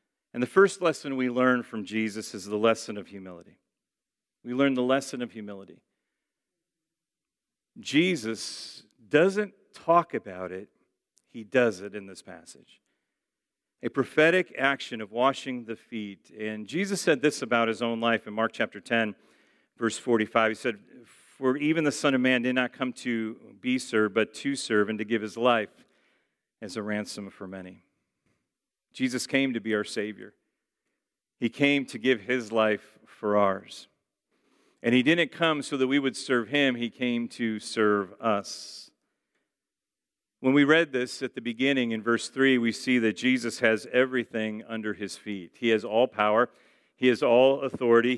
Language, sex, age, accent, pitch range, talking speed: English, male, 40-59, American, 110-135 Hz, 165 wpm